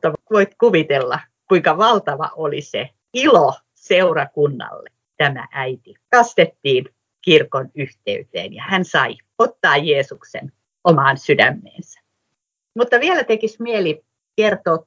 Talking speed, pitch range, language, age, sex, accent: 100 wpm, 155-235 Hz, Finnish, 50-69, female, native